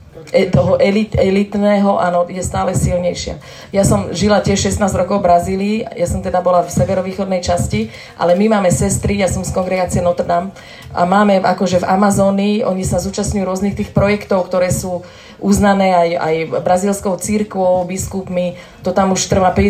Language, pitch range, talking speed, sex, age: Slovak, 175-200 Hz, 175 wpm, female, 30-49